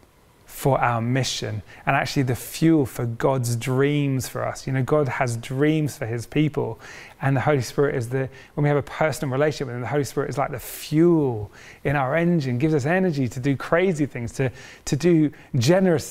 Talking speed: 205 wpm